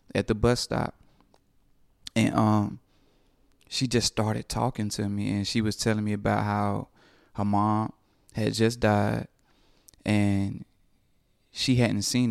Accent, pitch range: American, 100-110 Hz